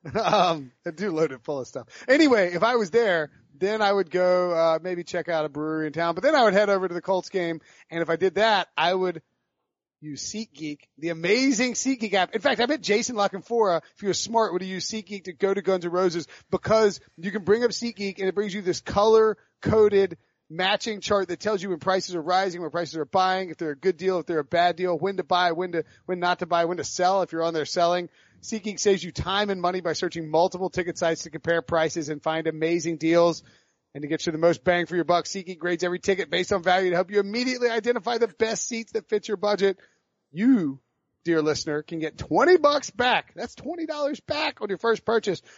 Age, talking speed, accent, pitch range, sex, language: 30-49, 240 wpm, American, 165-205 Hz, male, English